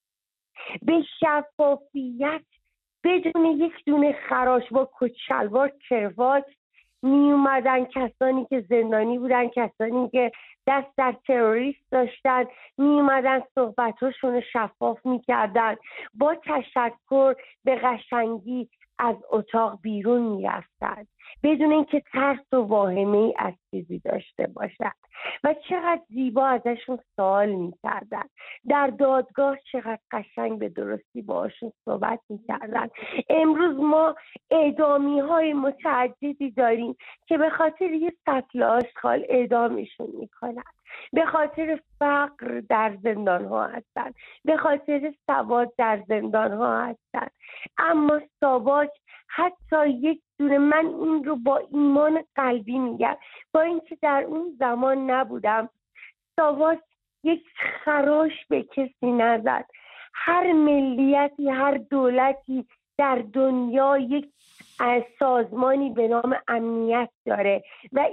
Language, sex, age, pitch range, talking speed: English, female, 40-59, 240-295 Hz, 110 wpm